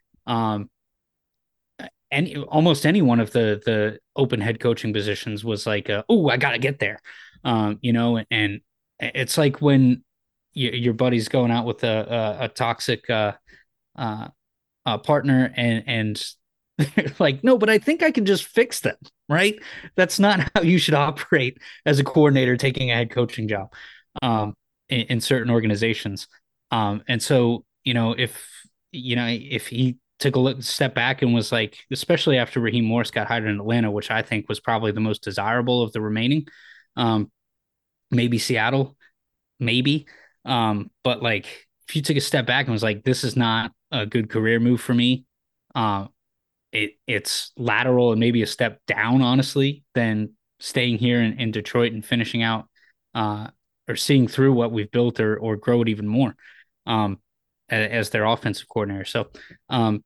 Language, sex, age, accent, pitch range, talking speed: English, male, 20-39, American, 110-130 Hz, 180 wpm